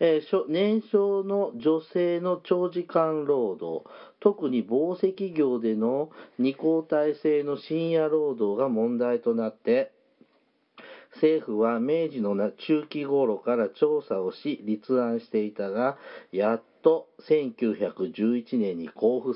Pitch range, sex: 120-165 Hz, male